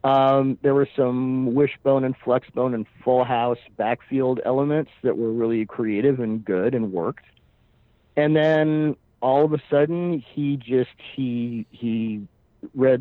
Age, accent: 50-69, American